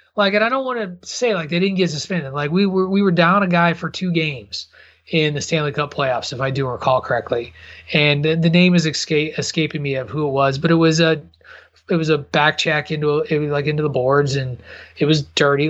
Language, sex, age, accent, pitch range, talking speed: English, male, 30-49, American, 140-180 Hz, 245 wpm